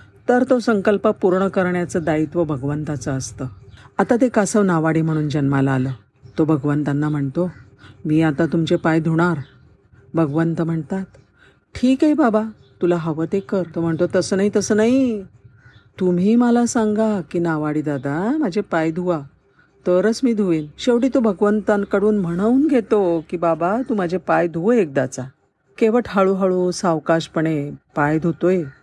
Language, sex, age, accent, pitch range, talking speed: Marathi, female, 50-69, native, 155-205 Hz, 135 wpm